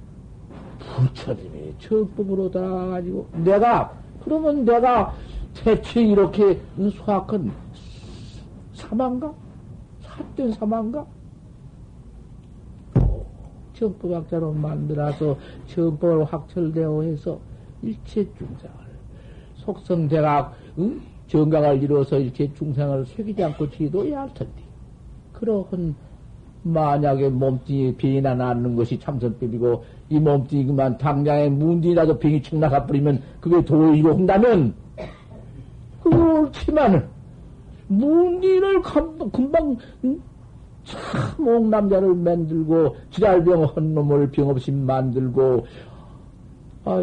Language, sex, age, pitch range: Korean, male, 60-79, 145-215 Hz